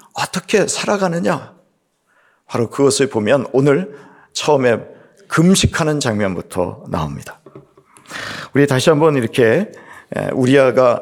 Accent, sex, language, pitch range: native, male, Korean, 115-145 Hz